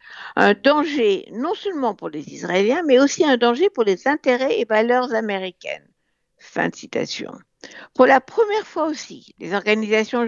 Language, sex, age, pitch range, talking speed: French, female, 60-79, 205-290 Hz, 160 wpm